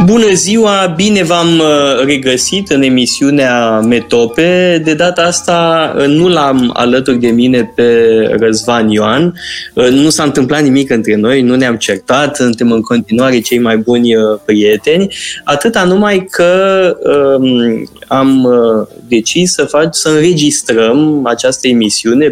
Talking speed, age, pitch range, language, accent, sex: 125 wpm, 20-39, 120-165 Hz, Romanian, native, male